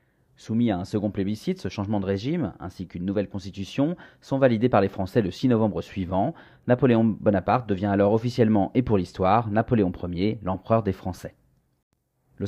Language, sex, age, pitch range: French, male, 40-59, 95-120 Hz